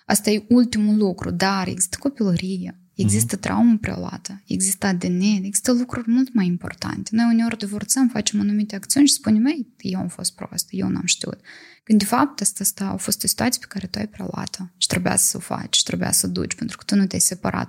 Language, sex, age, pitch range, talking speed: Romanian, female, 20-39, 190-230 Hz, 210 wpm